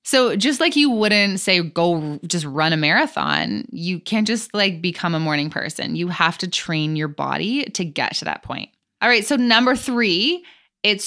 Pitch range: 165-225 Hz